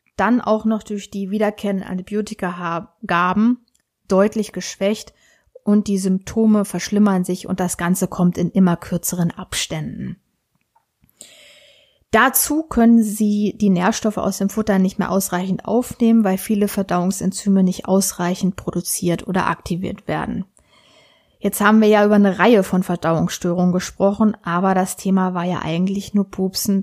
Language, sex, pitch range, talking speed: German, female, 185-215 Hz, 135 wpm